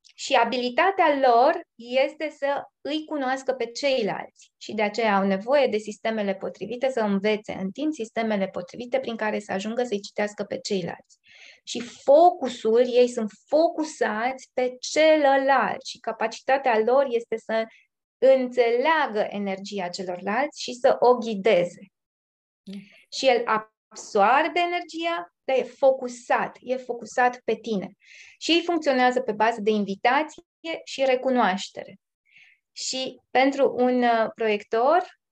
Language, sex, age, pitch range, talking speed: Romanian, female, 20-39, 215-270 Hz, 125 wpm